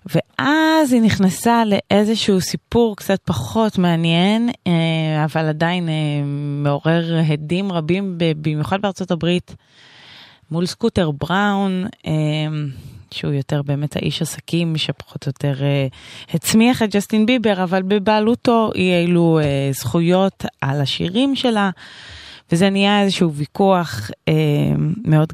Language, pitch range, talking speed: Hebrew, 150-195 Hz, 105 wpm